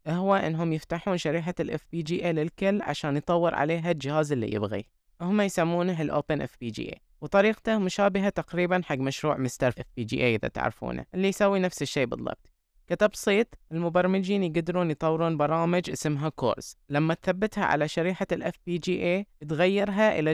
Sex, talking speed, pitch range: female, 155 wpm, 145-180 Hz